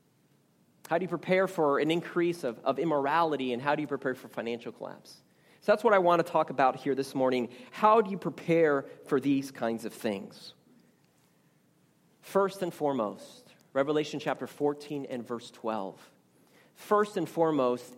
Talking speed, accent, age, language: 165 wpm, American, 40-59, English